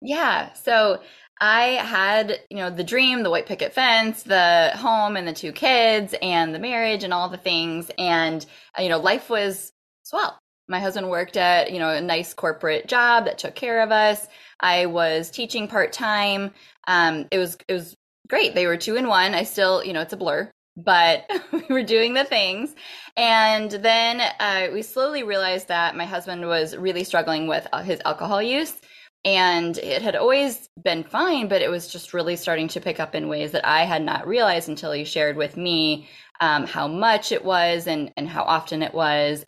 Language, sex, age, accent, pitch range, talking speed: English, female, 10-29, American, 165-220 Hz, 195 wpm